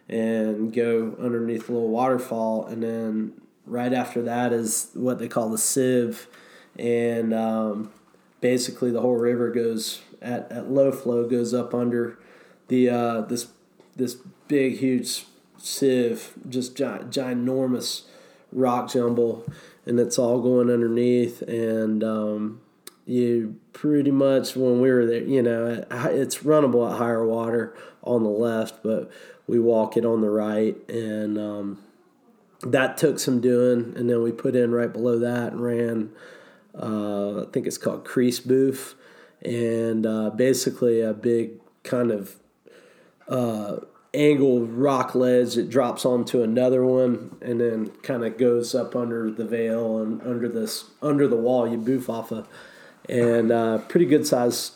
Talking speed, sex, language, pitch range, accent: 150 wpm, male, English, 115-125 Hz, American